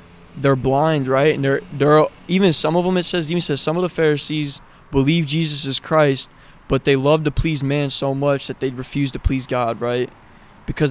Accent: American